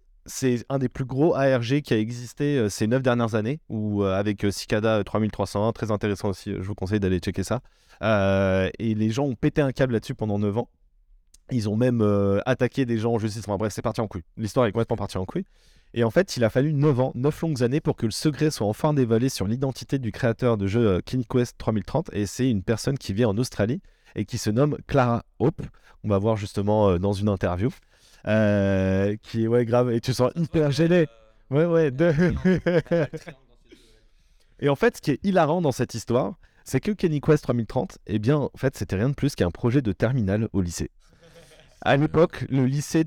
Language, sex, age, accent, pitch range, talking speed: French, male, 20-39, French, 105-145 Hz, 220 wpm